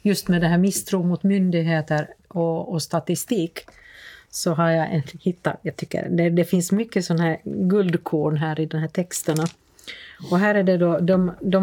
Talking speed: 175 wpm